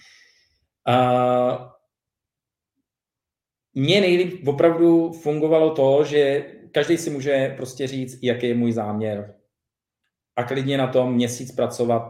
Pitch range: 110-135 Hz